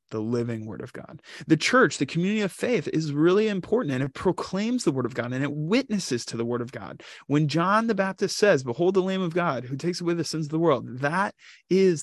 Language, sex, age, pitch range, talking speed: English, male, 20-39, 125-165 Hz, 245 wpm